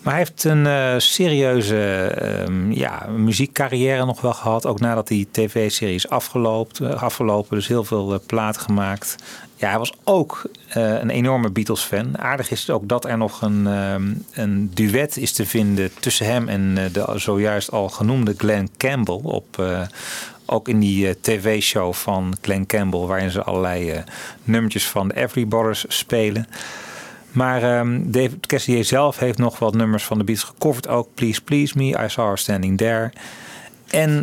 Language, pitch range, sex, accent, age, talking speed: Dutch, 100-125 Hz, male, Dutch, 40-59, 165 wpm